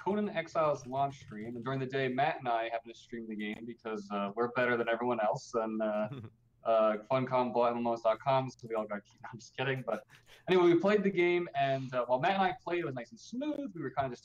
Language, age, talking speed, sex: English, 20-39, 245 wpm, male